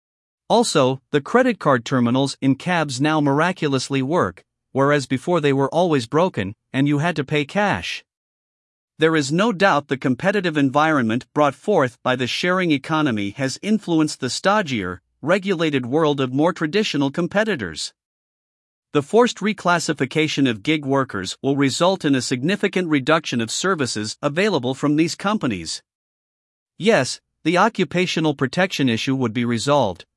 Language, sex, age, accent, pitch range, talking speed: English, male, 50-69, American, 135-170 Hz, 140 wpm